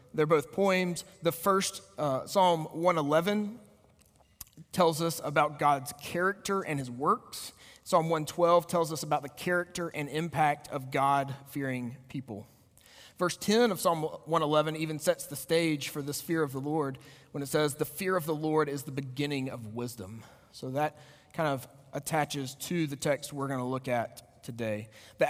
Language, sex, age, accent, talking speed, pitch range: English, male, 30-49, American, 170 wpm, 125-165 Hz